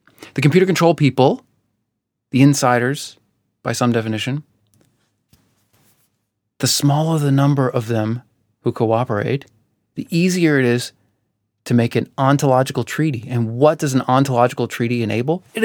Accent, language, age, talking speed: American, English, 30-49, 130 wpm